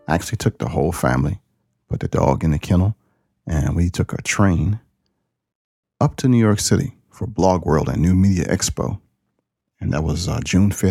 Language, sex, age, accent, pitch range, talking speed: English, male, 40-59, American, 75-100 Hz, 185 wpm